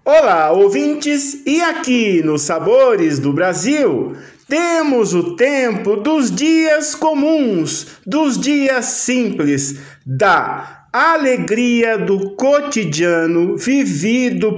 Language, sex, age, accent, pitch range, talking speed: Portuguese, male, 50-69, Brazilian, 175-265 Hz, 90 wpm